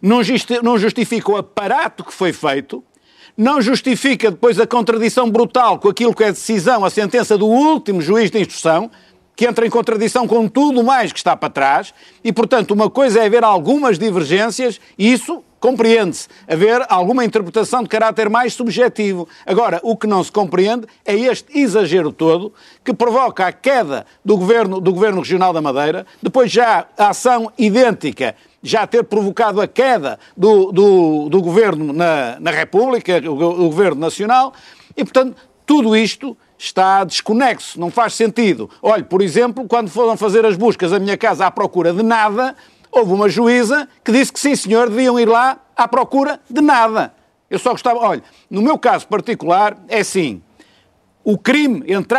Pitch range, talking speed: 200-245 Hz, 170 wpm